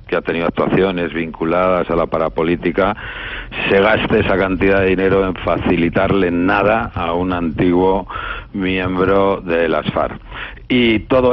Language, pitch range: Spanish, 80-100 Hz